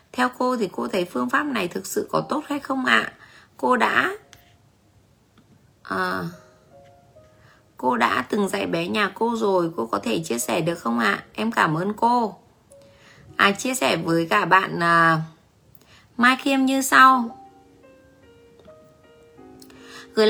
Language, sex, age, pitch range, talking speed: Vietnamese, female, 20-39, 160-230 Hz, 150 wpm